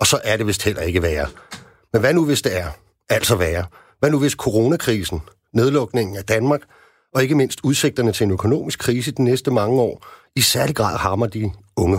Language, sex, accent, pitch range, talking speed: Danish, male, native, 105-140 Hz, 205 wpm